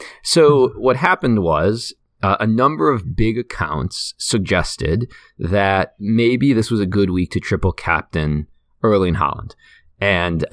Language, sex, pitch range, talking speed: English, male, 95-120 Hz, 135 wpm